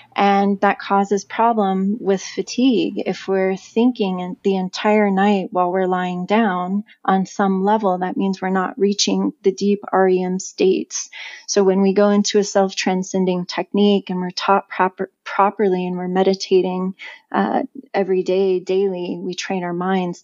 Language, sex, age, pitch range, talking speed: English, female, 30-49, 185-210 Hz, 150 wpm